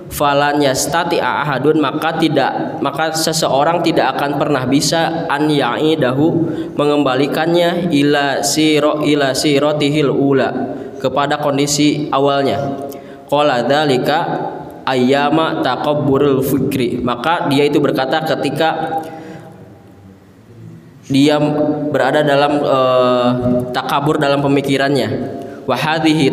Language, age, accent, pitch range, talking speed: Indonesian, 20-39, native, 135-160 Hz, 90 wpm